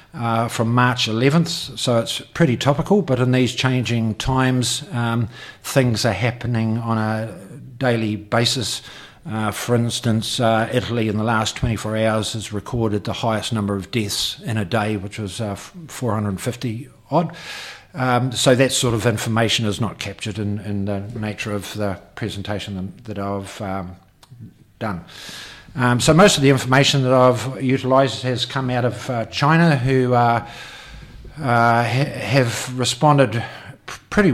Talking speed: 150 wpm